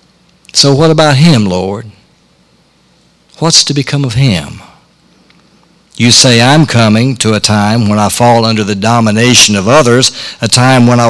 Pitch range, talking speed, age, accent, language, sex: 110-140 Hz, 155 wpm, 60-79, American, English, male